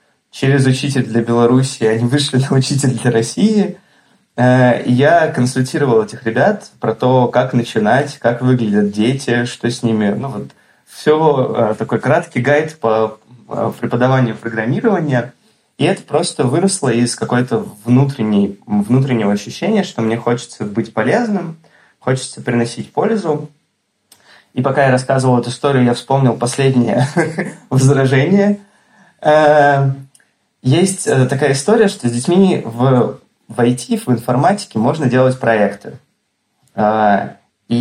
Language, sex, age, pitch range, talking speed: Russian, male, 20-39, 115-140 Hz, 120 wpm